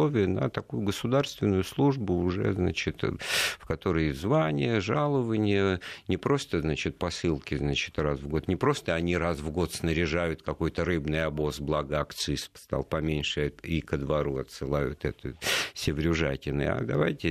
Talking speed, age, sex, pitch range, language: 140 wpm, 50-69, male, 75-100 Hz, Russian